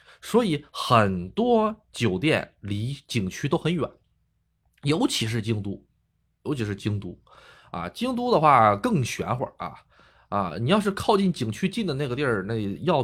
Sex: male